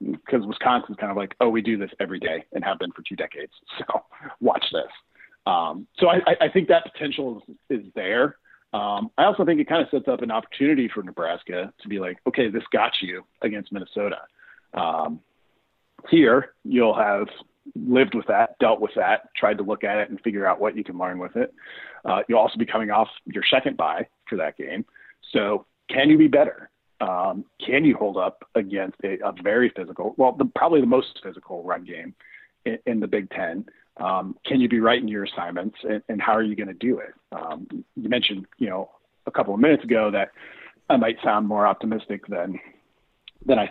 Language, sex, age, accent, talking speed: English, male, 40-59, American, 210 wpm